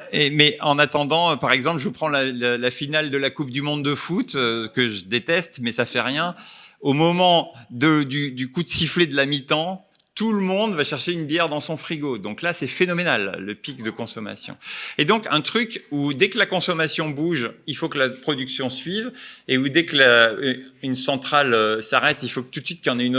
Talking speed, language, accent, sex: 240 wpm, French, French, male